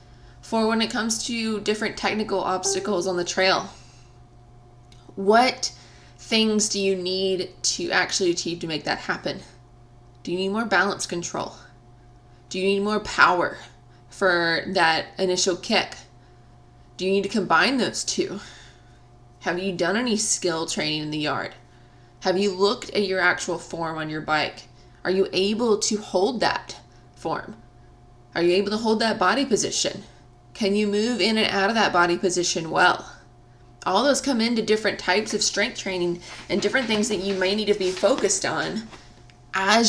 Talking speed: 165 wpm